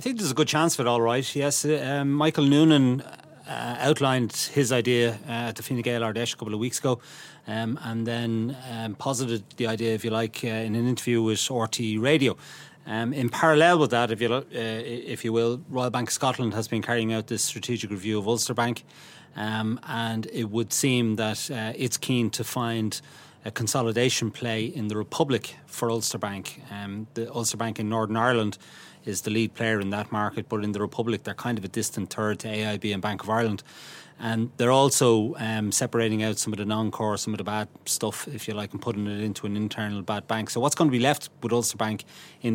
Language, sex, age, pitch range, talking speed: English, male, 30-49, 110-130 Hz, 220 wpm